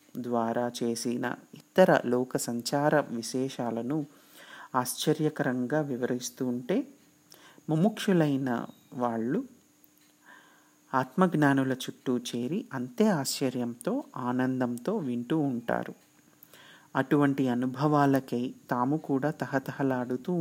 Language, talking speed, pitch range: Telugu, 70 wpm, 120-150 Hz